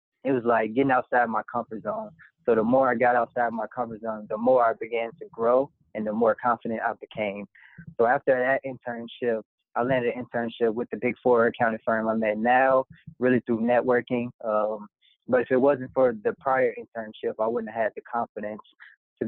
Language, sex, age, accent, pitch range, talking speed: English, male, 20-39, American, 115-135 Hz, 200 wpm